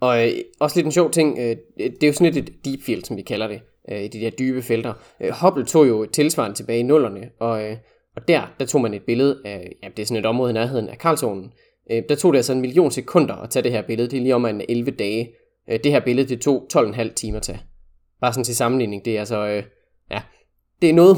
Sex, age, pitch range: male, 20-39, 110-140 Hz